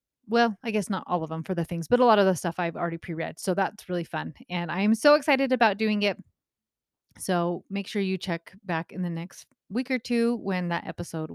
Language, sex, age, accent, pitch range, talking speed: English, female, 30-49, American, 175-240 Hz, 240 wpm